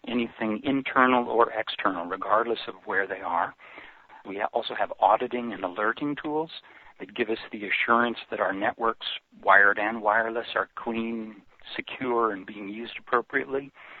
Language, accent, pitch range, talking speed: English, American, 110-125 Hz, 145 wpm